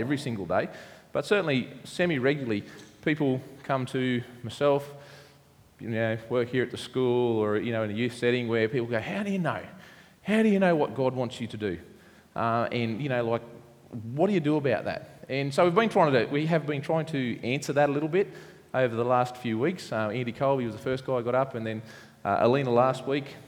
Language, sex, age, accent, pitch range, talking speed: English, male, 20-39, Australian, 115-150 Hz, 230 wpm